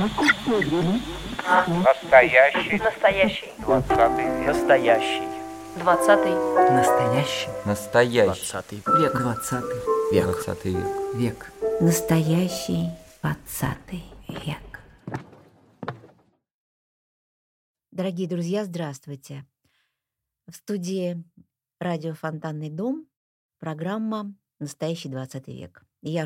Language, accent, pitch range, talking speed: Russian, native, 155-200 Hz, 65 wpm